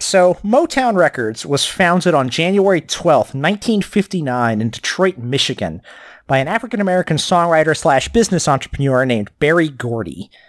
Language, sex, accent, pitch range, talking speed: English, male, American, 120-170 Hz, 125 wpm